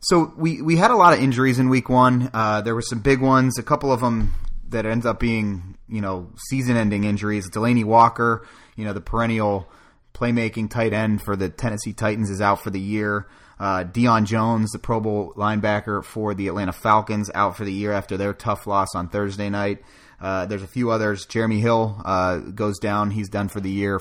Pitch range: 100-115 Hz